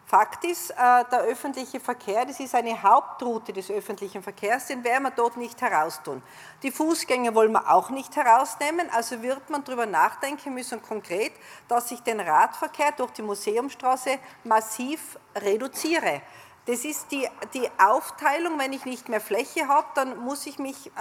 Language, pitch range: German, 230-280 Hz